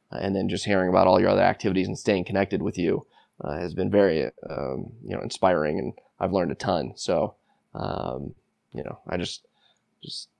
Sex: male